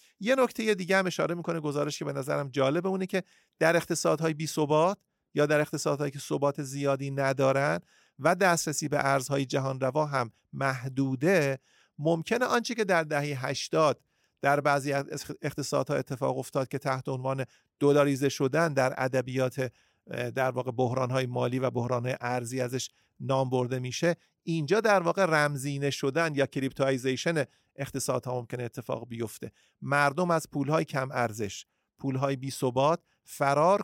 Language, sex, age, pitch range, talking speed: Persian, male, 40-59, 135-175 Hz, 140 wpm